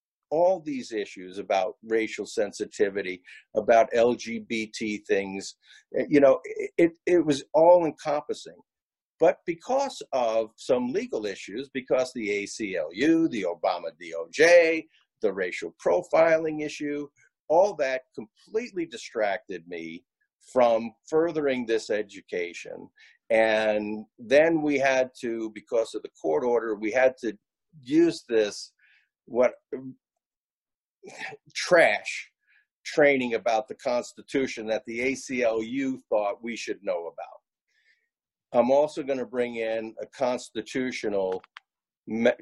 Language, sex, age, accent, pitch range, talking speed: English, male, 50-69, American, 110-155 Hz, 110 wpm